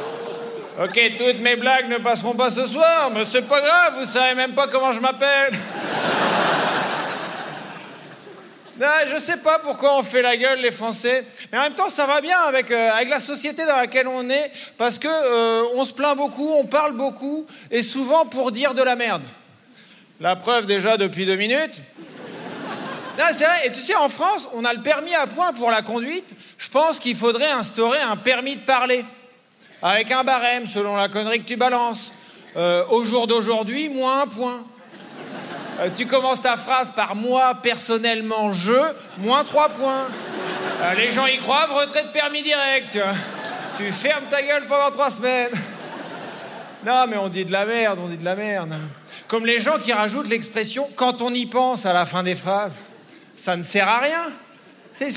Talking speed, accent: 190 wpm, French